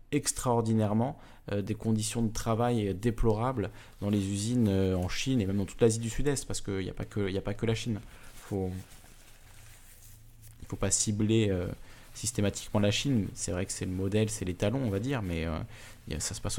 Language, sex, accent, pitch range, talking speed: French, male, French, 100-120 Hz, 205 wpm